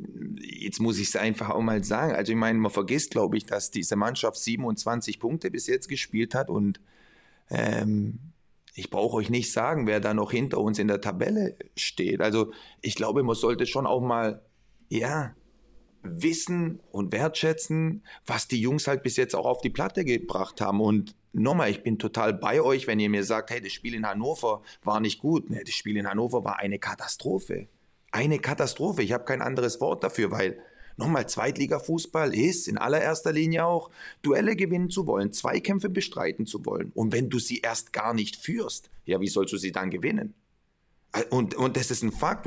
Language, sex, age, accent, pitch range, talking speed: German, male, 30-49, German, 105-155 Hz, 190 wpm